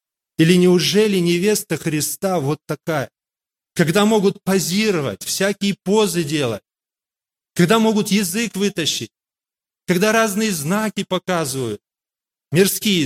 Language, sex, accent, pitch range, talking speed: Russian, male, native, 155-200 Hz, 95 wpm